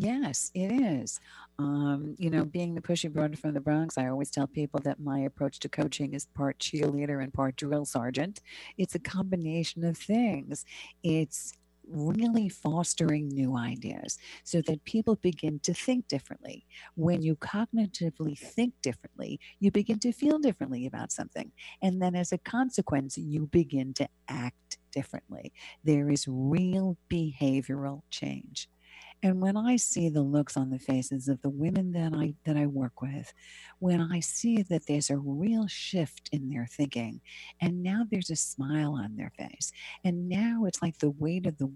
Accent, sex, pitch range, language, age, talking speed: American, female, 140-180 Hz, English, 50-69, 170 wpm